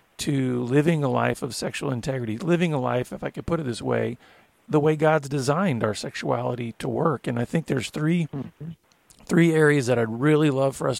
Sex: male